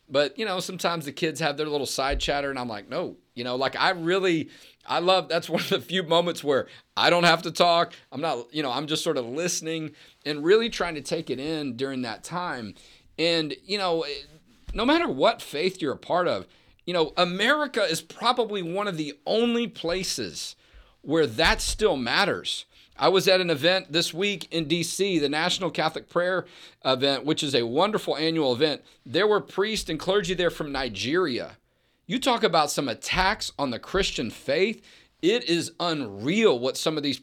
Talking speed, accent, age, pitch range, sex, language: 195 wpm, American, 40-59, 145-185 Hz, male, English